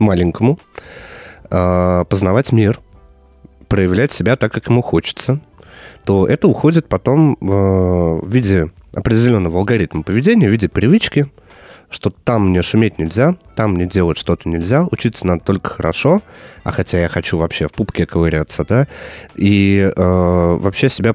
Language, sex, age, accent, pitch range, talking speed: Russian, male, 30-49, native, 90-115 Hz, 135 wpm